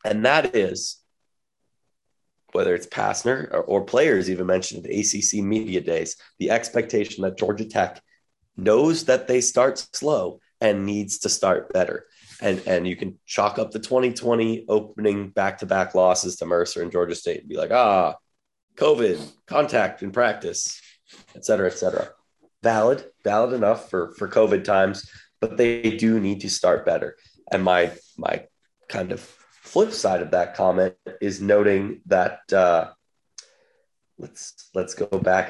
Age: 30-49